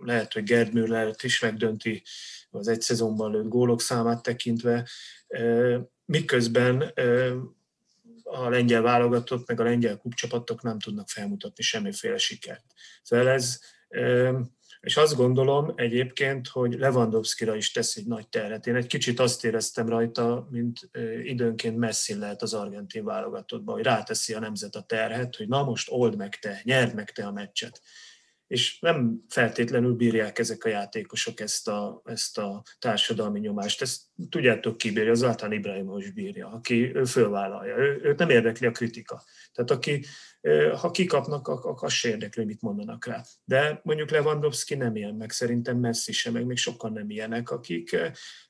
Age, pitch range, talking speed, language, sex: 30-49, 115-135 Hz, 150 wpm, Hungarian, male